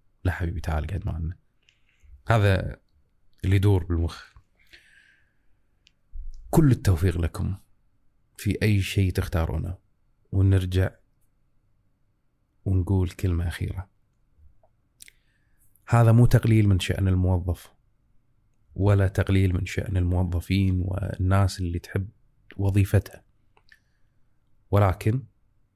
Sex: male